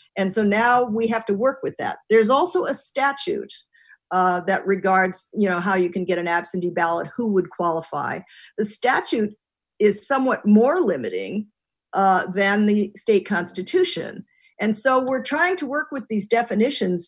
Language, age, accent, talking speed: English, 50-69, American, 170 wpm